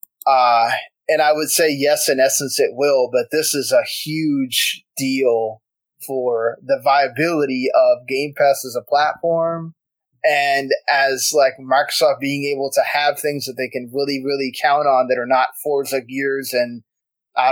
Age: 20-39